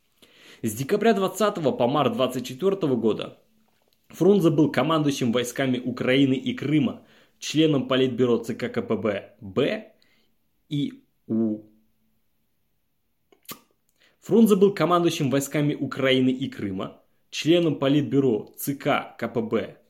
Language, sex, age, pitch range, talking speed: Russian, male, 20-39, 125-175 Hz, 95 wpm